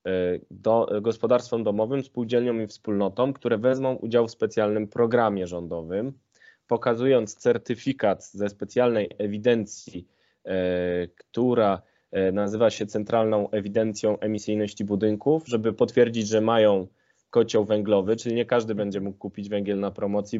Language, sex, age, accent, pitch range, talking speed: Polish, male, 10-29, native, 105-120 Hz, 120 wpm